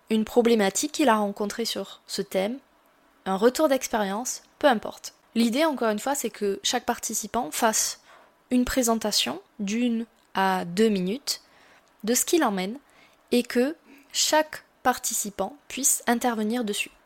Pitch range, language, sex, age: 205-250 Hz, French, female, 20-39